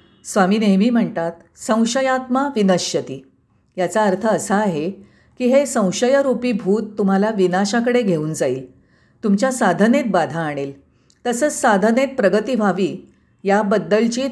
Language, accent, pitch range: Marathi, native, 190-250 Hz